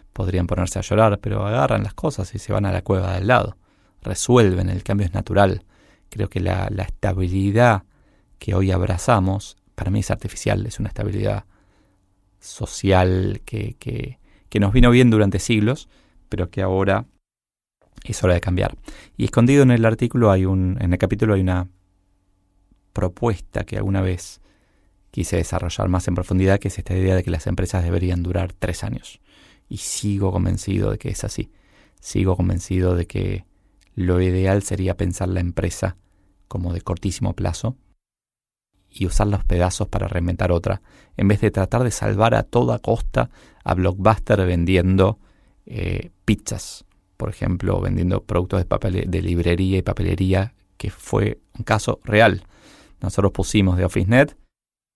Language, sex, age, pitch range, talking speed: Spanish, male, 20-39, 95-105 Hz, 160 wpm